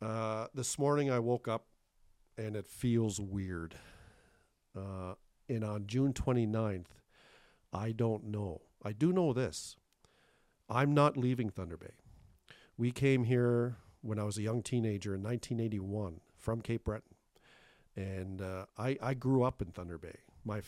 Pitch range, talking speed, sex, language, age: 100-120 Hz, 150 wpm, male, English, 50-69